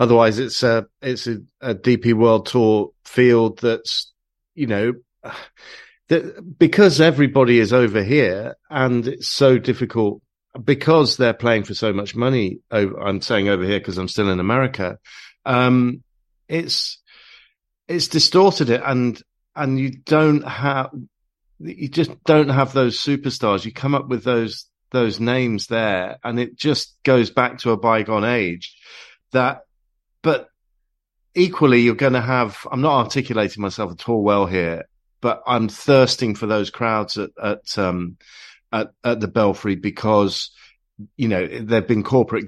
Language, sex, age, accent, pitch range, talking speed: English, male, 50-69, British, 100-130 Hz, 155 wpm